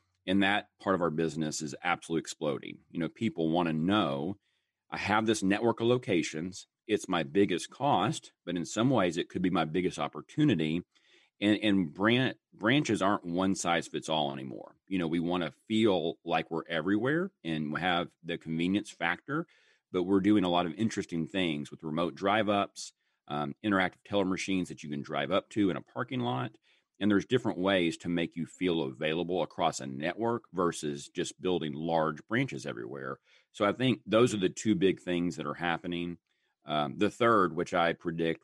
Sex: male